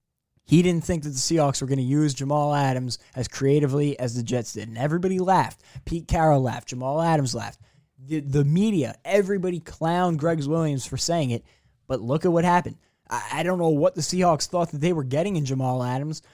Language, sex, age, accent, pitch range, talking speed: English, male, 10-29, American, 130-170 Hz, 210 wpm